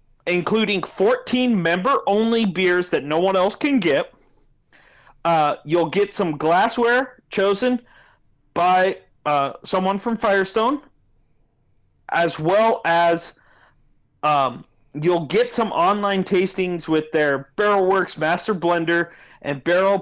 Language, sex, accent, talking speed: English, male, American, 115 wpm